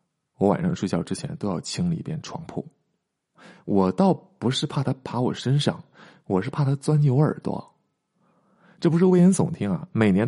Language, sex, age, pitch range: Chinese, male, 20-39, 135-180 Hz